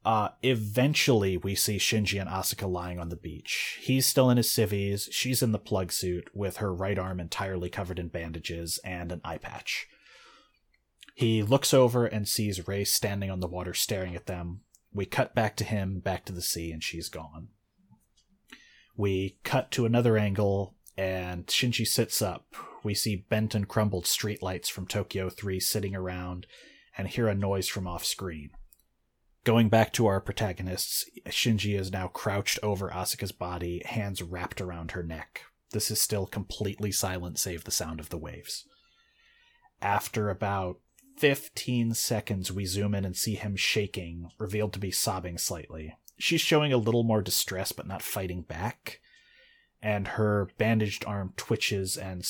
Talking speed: 165 wpm